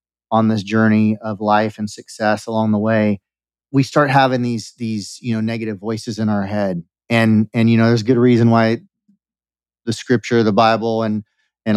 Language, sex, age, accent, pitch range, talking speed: English, male, 30-49, American, 110-130 Hz, 190 wpm